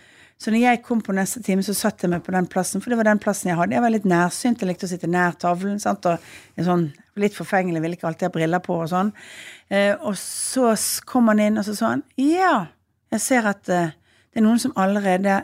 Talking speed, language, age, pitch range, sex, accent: 240 wpm, English, 40-59, 170-215 Hz, female, Norwegian